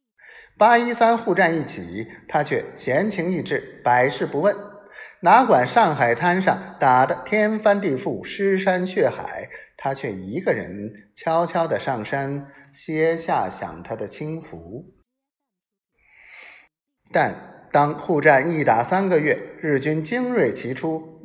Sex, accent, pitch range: male, native, 145-215 Hz